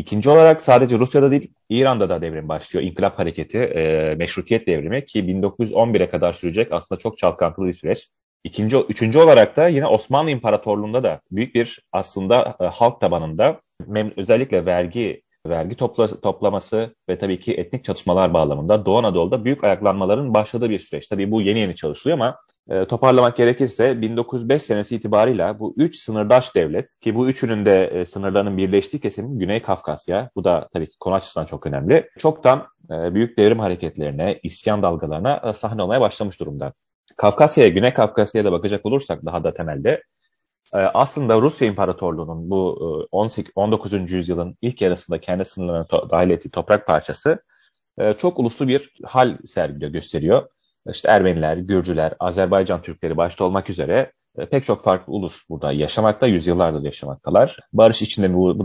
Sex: male